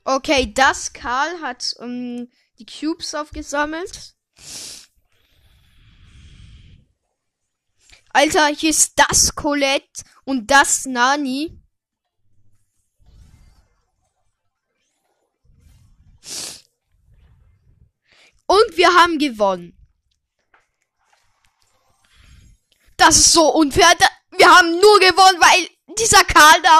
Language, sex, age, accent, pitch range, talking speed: German, female, 10-29, German, 215-330 Hz, 70 wpm